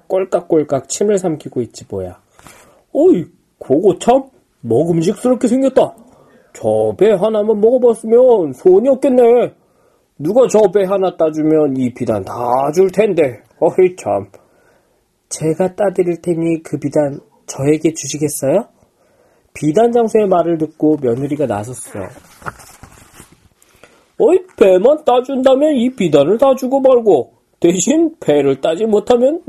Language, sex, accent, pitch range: Korean, male, native, 140-210 Hz